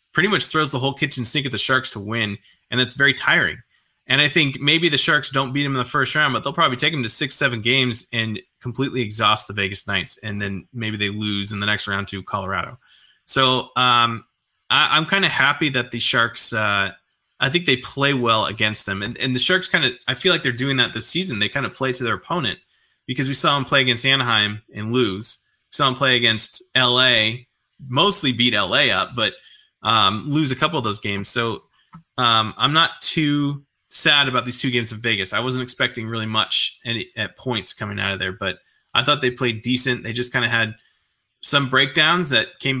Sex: male